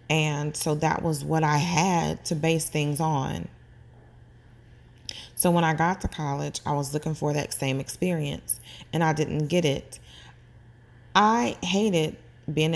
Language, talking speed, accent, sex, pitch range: English, 150 wpm, American, female, 120-165 Hz